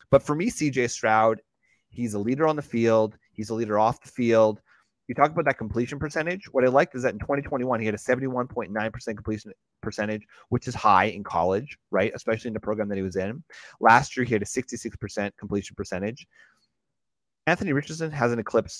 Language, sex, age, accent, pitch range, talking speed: English, male, 30-49, American, 110-145 Hz, 200 wpm